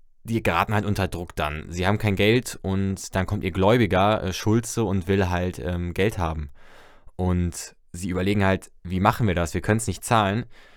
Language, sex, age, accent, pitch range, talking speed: German, male, 20-39, German, 95-110 Hz, 195 wpm